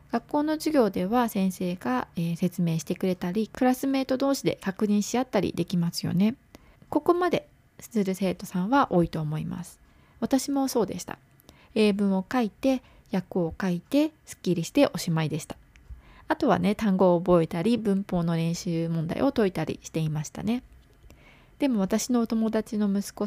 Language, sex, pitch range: Japanese, female, 180-245 Hz